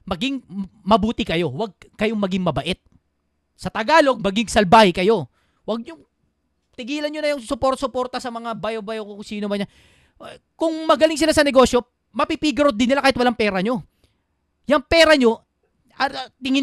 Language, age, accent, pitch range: Filipino, 30-49, native, 200-290 Hz